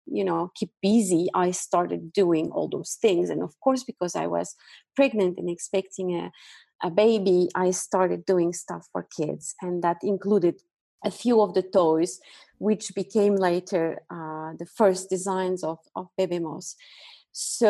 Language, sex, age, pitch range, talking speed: English, female, 30-49, 175-220 Hz, 160 wpm